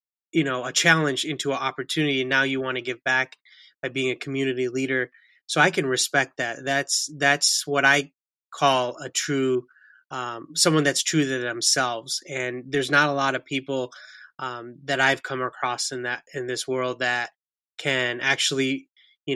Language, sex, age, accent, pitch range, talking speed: English, male, 20-39, American, 125-145 Hz, 180 wpm